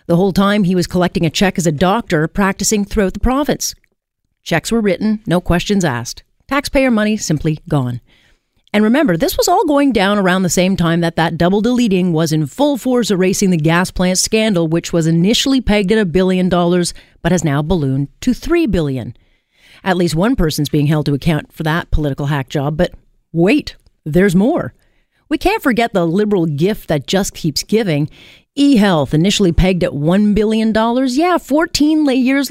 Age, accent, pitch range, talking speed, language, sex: 40-59, American, 165-220 Hz, 185 wpm, English, female